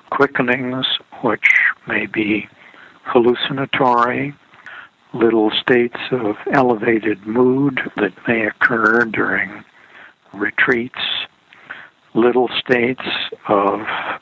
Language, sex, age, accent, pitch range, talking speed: English, male, 60-79, American, 115-135 Hz, 75 wpm